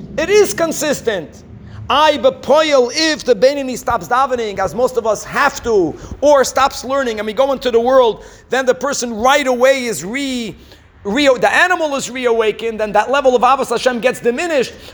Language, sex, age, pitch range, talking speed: English, male, 50-69, 225-280 Hz, 175 wpm